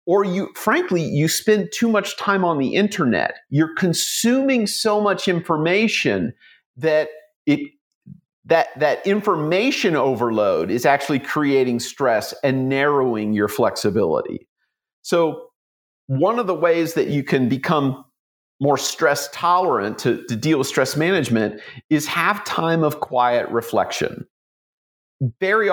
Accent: American